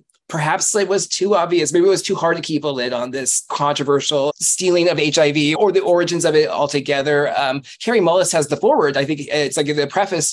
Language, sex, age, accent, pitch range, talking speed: English, male, 20-39, American, 145-190 Hz, 220 wpm